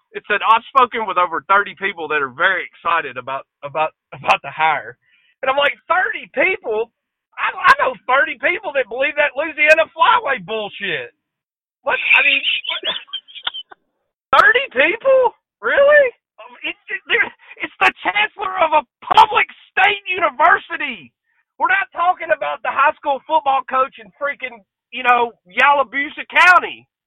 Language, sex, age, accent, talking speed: English, male, 40-59, American, 145 wpm